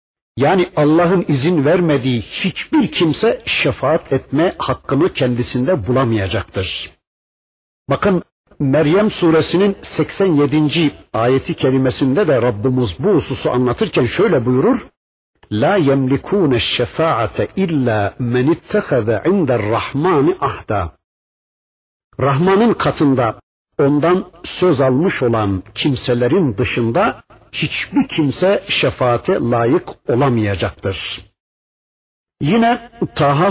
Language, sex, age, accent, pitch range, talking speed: Turkish, male, 60-79, native, 120-160 Hz, 80 wpm